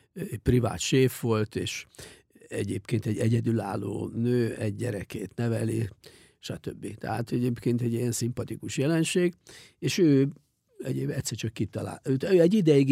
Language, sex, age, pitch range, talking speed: English, male, 50-69, 115-135 Hz, 125 wpm